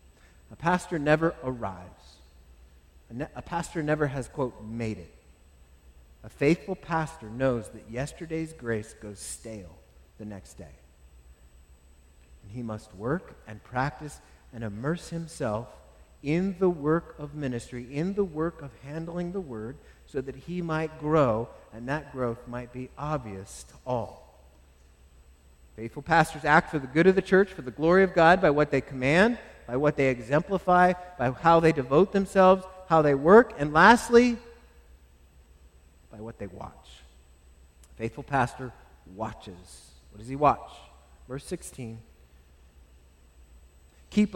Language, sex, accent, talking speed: English, male, American, 140 wpm